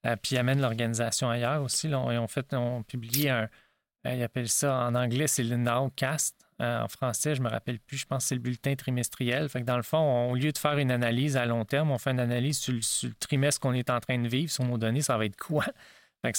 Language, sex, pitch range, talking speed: French, male, 120-140 Hz, 265 wpm